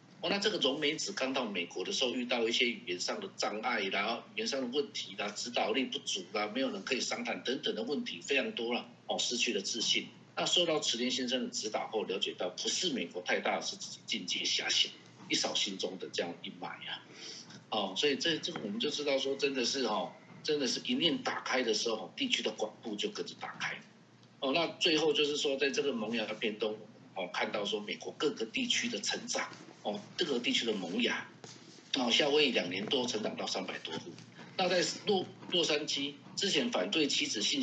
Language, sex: Chinese, male